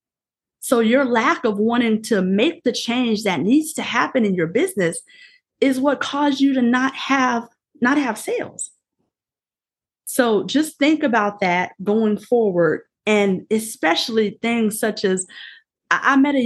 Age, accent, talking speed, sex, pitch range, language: 30-49, American, 150 wpm, female, 205-260 Hz, English